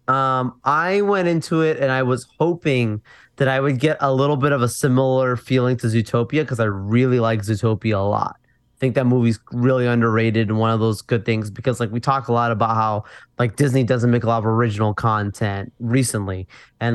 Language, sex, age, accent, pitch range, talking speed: English, male, 20-39, American, 115-135 Hz, 210 wpm